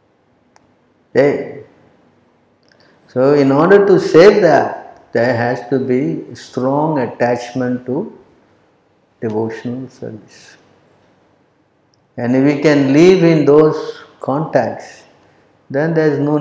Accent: Indian